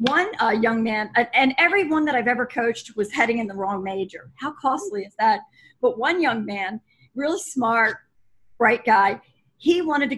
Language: English